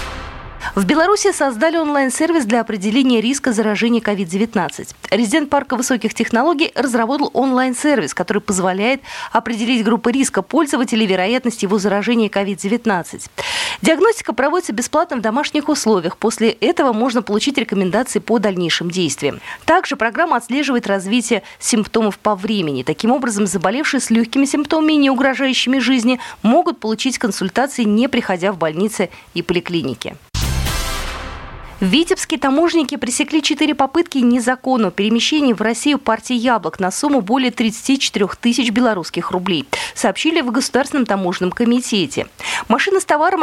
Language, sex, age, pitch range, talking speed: Russian, female, 20-39, 205-275 Hz, 125 wpm